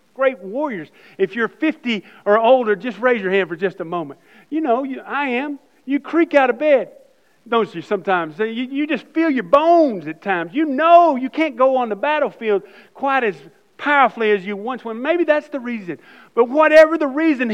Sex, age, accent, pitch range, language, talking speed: male, 50-69, American, 205-280 Hz, English, 200 wpm